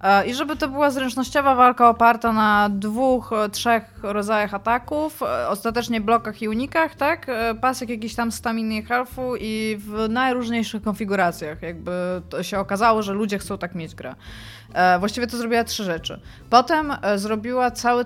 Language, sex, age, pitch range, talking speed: Polish, female, 20-39, 205-235 Hz, 150 wpm